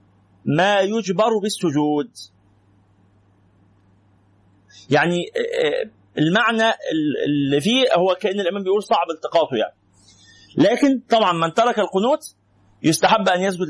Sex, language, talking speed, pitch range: male, Arabic, 95 wpm, 140-205 Hz